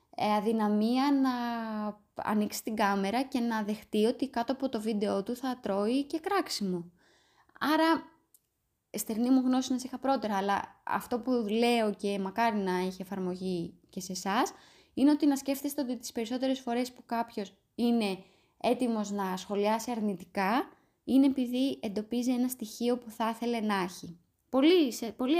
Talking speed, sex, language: 155 wpm, female, Greek